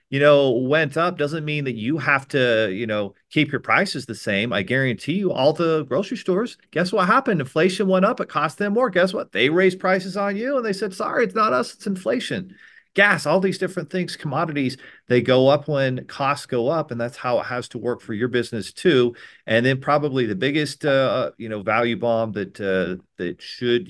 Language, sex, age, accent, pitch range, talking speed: English, male, 40-59, American, 110-155 Hz, 220 wpm